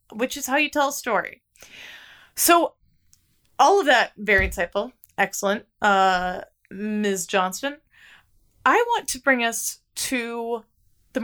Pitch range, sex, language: 185-260 Hz, female, English